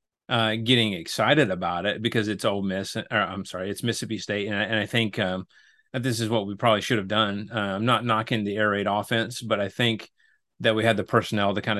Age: 30-49